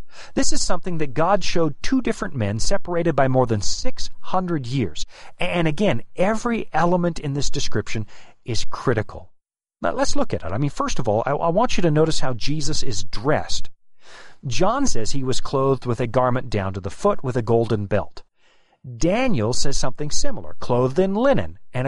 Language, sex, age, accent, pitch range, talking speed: English, male, 40-59, American, 115-175 Hz, 180 wpm